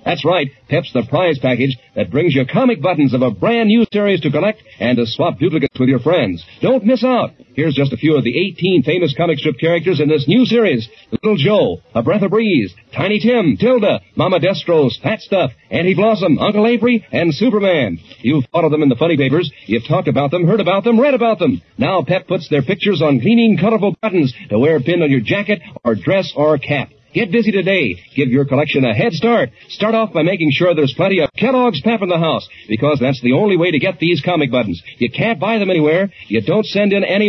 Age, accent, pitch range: 50-69, American, 145-210 Hz